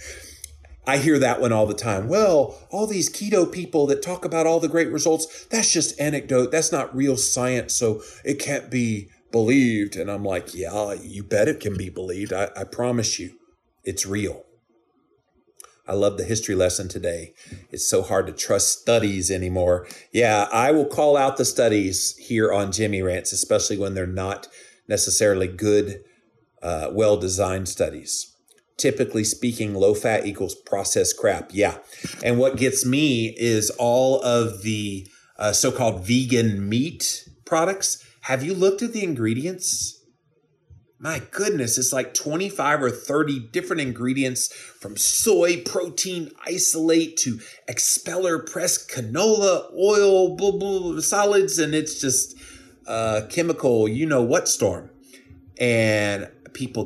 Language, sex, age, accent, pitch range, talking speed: English, male, 40-59, American, 105-160 Hz, 145 wpm